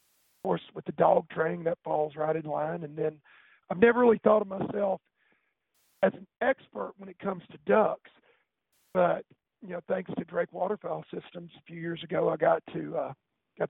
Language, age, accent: English, 50-69, American